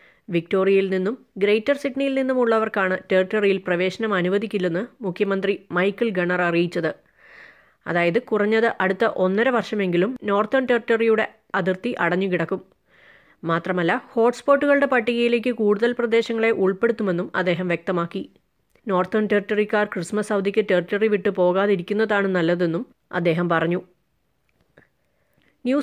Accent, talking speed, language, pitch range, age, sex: native, 95 wpm, Malayalam, 180-225 Hz, 30-49, female